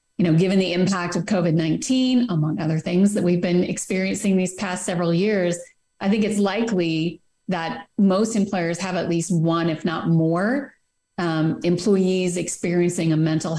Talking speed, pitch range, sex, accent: 170 wpm, 175-210 Hz, female, American